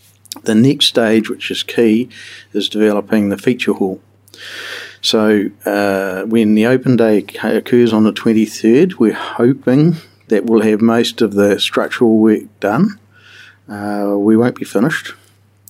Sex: male